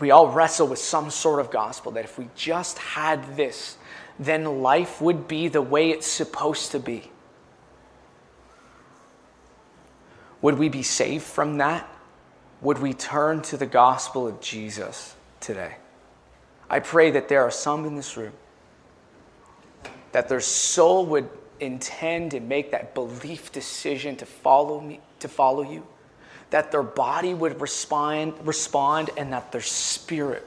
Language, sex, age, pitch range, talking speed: English, male, 20-39, 130-160 Hz, 140 wpm